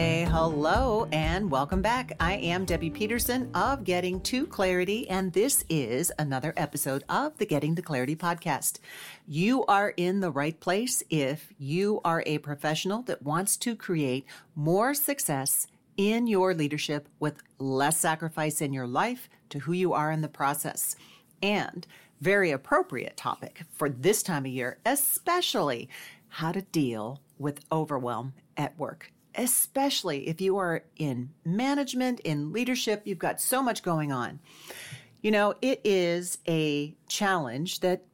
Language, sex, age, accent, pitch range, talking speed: English, female, 40-59, American, 150-200 Hz, 150 wpm